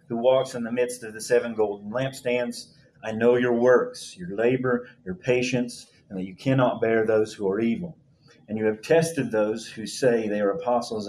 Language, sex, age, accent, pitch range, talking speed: English, male, 40-59, American, 110-135 Hz, 200 wpm